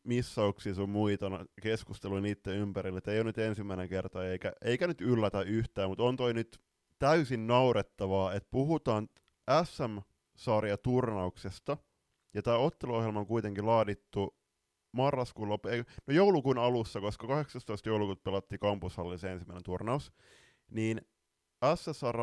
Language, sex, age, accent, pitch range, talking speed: Finnish, male, 20-39, native, 95-115 Hz, 125 wpm